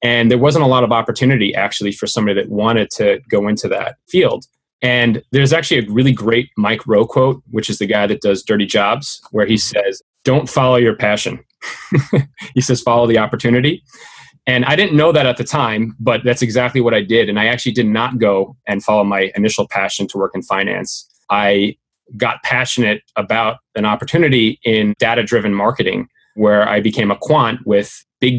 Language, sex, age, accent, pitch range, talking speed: English, male, 30-49, American, 105-125 Hz, 195 wpm